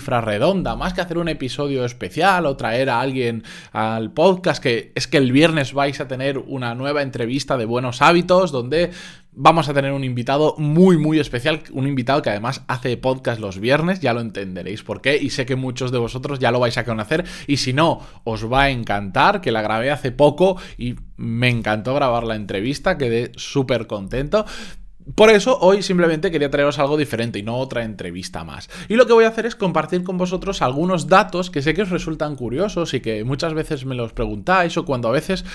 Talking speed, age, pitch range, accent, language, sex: 210 wpm, 20-39, 120-170 Hz, Spanish, Spanish, male